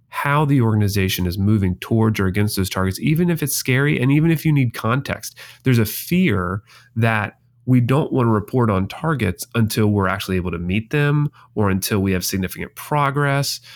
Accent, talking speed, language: American, 190 wpm, English